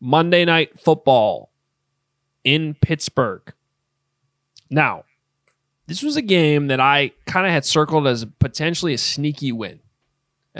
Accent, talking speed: American, 125 wpm